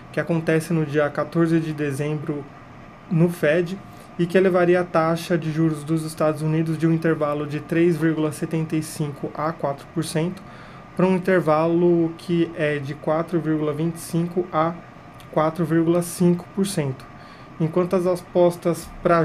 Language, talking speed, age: Portuguese, 120 wpm, 20-39